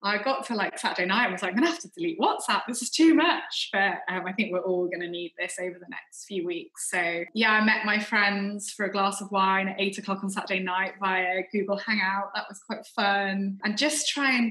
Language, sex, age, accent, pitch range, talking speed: English, female, 20-39, British, 185-215 Hz, 255 wpm